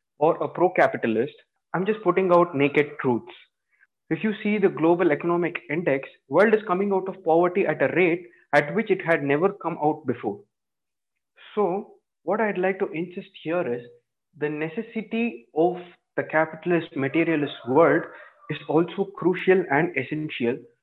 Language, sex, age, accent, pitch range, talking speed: English, male, 20-39, Indian, 145-190 Hz, 155 wpm